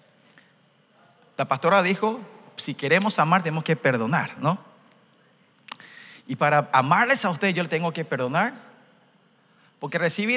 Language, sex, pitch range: Korean, male, 160-230 Hz